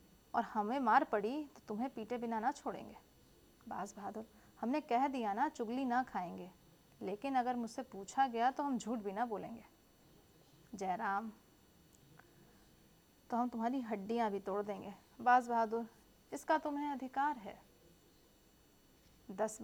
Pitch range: 215-265 Hz